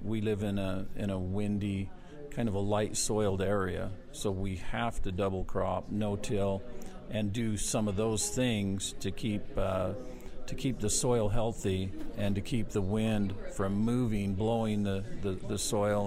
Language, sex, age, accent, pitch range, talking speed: English, male, 50-69, American, 95-110 Hz, 170 wpm